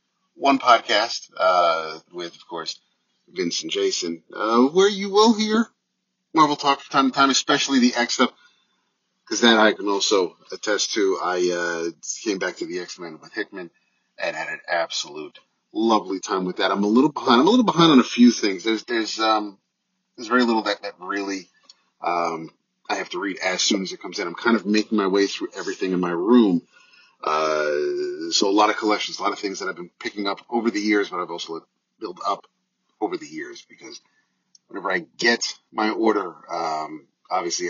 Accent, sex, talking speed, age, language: American, male, 200 wpm, 30-49, English